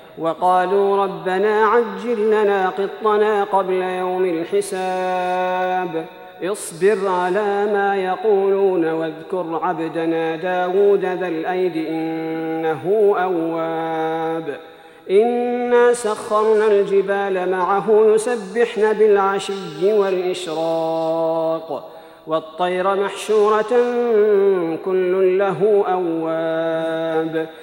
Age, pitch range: 40-59, 165-205 Hz